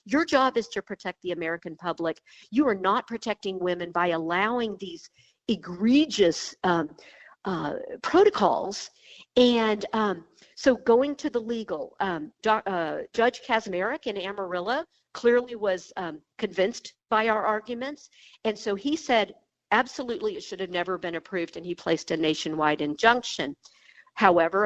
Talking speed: 140 wpm